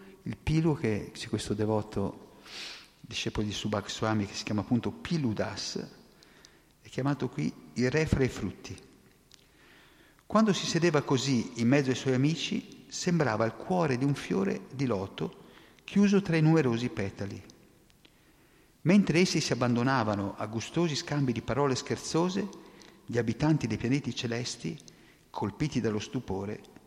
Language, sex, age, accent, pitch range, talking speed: Italian, male, 50-69, native, 115-165 Hz, 140 wpm